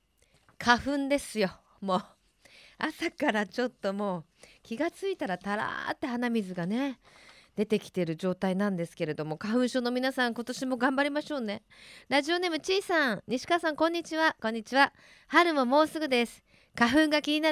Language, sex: Japanese, female